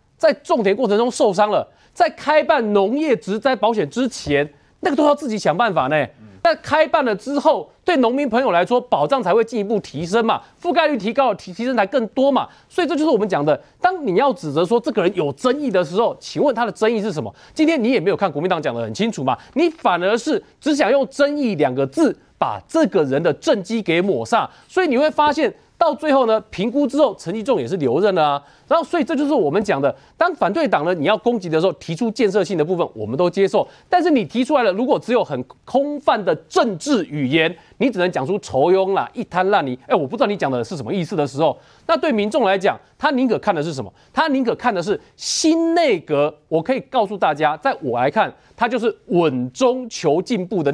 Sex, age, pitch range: male, 30-49, 190-295 Hz